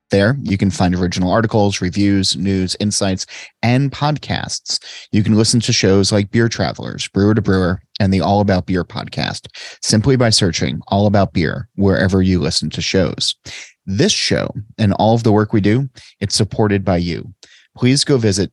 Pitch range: 90-110 Hz